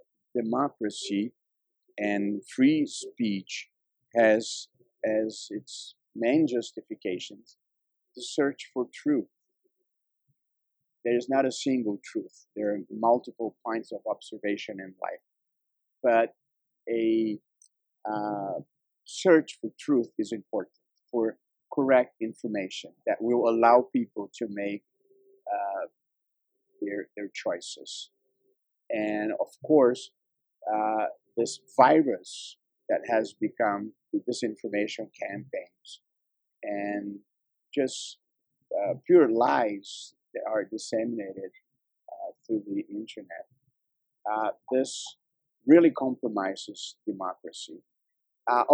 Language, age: English, 50-69